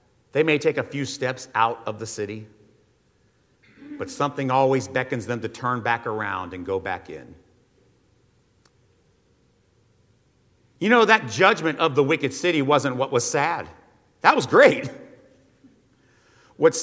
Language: English